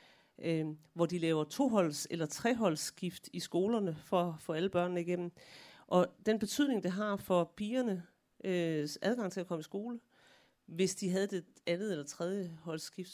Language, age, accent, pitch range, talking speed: Danish, 40-59, native, 165-205 Hz, 160 wpm